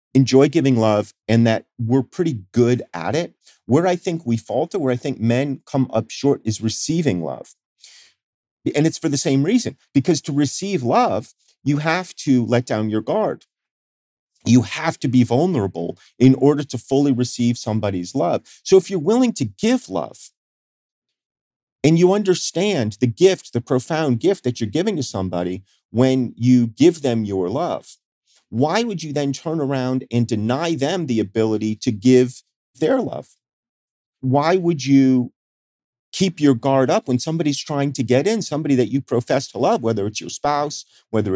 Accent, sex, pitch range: American, male, 115-150 Hz